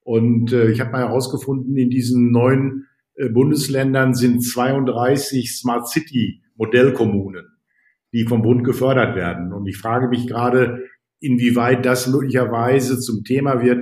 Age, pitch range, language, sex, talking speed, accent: 50-69, 115-125 Hz, German, male, 125 wpm, German